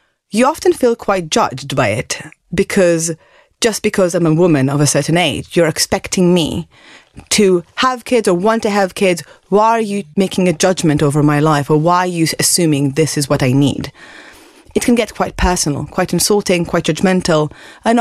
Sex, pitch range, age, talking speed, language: female, 160-215 Hz, 30-49, 190 wpm, English